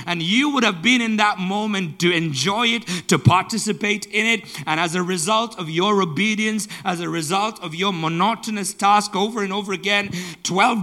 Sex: male